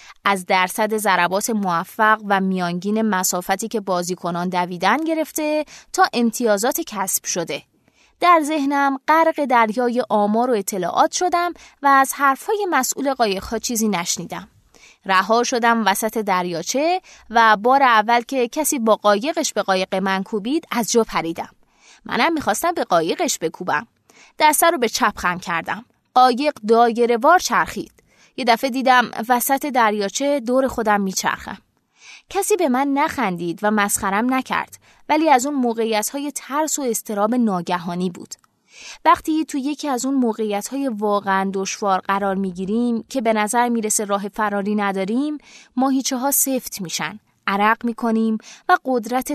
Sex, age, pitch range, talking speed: female, 20-39, 200-270 Hz, 135 wpm